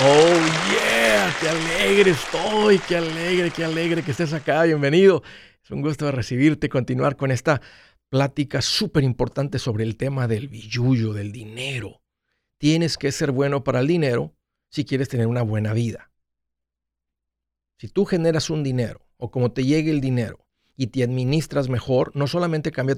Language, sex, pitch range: Spanish, male, 125-160 Hz